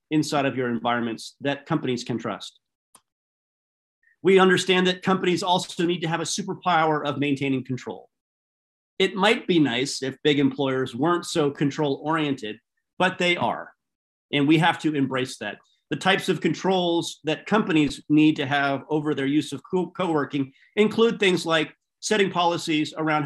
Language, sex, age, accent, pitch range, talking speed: English, male, 40-59, American, 135-170 Hz, 160 wpm